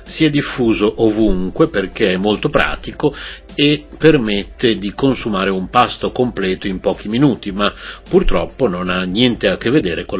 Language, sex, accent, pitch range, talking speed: Italian, male, native, 95-115 Hz, 160 wpm